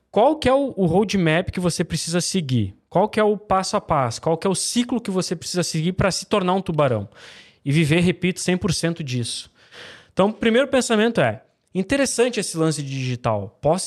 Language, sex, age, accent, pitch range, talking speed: Portuguese, male, 20-39, Brazilian, 150-200 Hz, 200 wpm